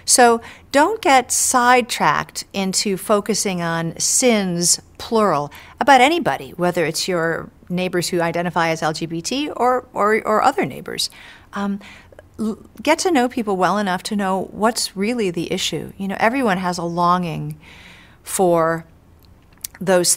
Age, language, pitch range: 40-59, English, 165-215 Hz